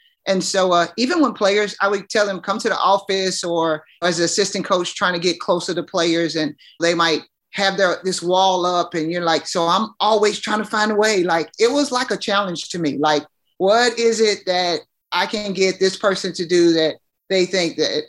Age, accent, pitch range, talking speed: 30-49, American, 165-200 Hz, 230 wpm